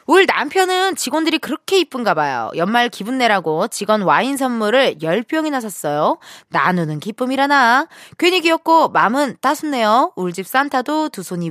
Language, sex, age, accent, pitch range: Korean, female, 20-39, native, 175-290 Hz